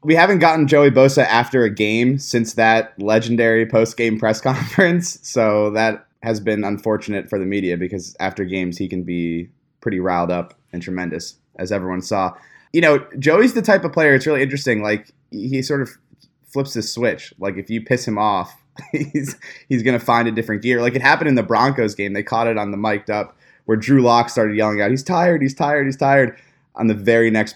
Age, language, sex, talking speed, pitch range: 20-39, English, male, 210 wpm, 95-130 Hz